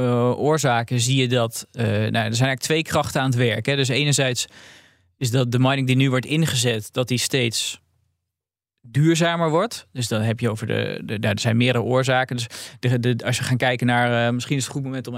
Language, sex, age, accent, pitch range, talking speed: Dutch, male, 20-39, Dutch, 120-135 Hz, 225 wpm